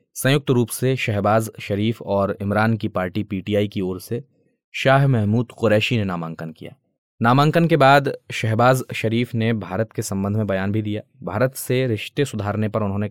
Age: 20-39